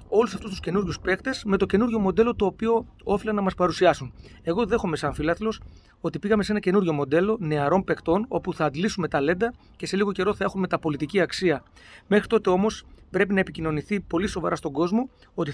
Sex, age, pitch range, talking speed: male, 30-49, 160-205 Hz, 195 wpm